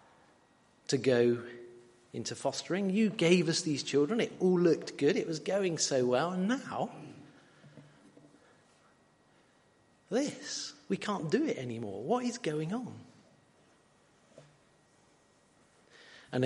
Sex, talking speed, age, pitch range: male, 115 wpm, 40-59, 130-210 Hz